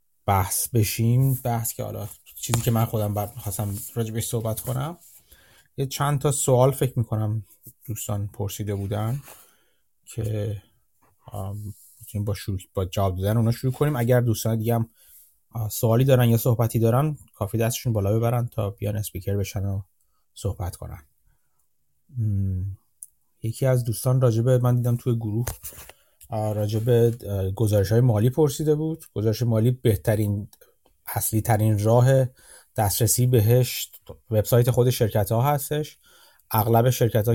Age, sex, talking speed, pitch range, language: 30-49, male, 135 wpm, 105-125 Hz, Persian